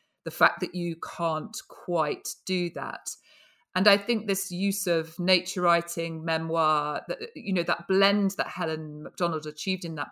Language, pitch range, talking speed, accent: English, 155-190 Hz, 165 wpm, British